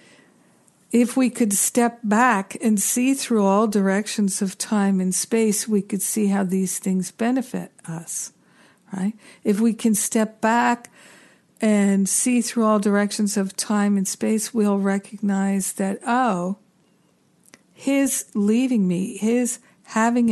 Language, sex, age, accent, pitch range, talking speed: English, female, 60-79, American, 195-220 Hz, 135 wpm